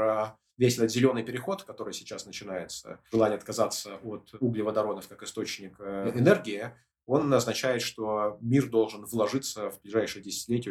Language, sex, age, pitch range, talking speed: Russian, male, 20-39, 100-120 Hz, 130 wpm